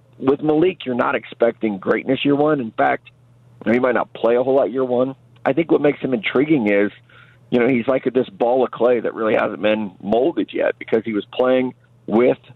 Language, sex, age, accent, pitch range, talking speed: English, male, 40-59, American, 110-125 Hz, 220 wpm